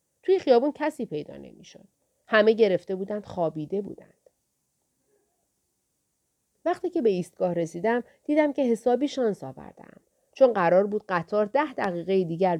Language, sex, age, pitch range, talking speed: Persian, female, 40-59, 185-255 Hz, 130 wpm